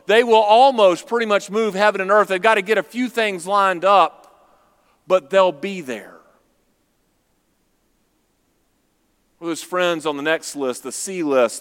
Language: English